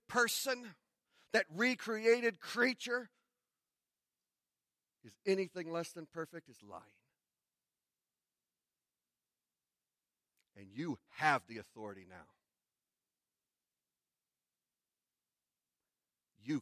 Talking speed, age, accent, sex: 65 wpm, 40-59, American, male